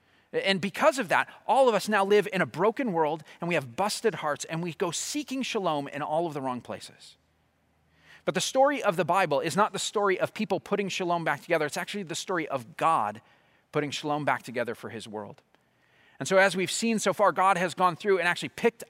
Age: 30-49